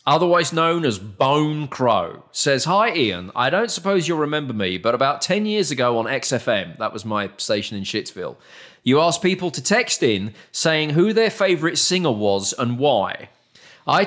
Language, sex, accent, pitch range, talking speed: English, male, British, 115-165 Hz, 180 wpm